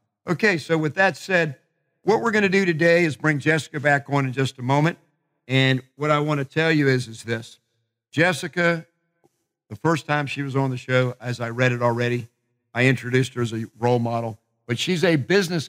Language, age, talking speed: English, 50-69, 210 wpm